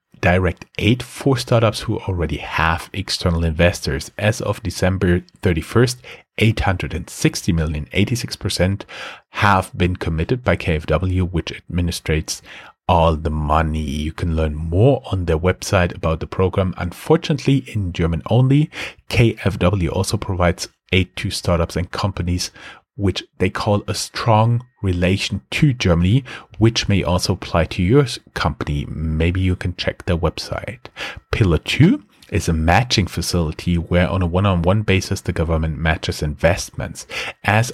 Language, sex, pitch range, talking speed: English, male, 85-105 Hz, 135 wpm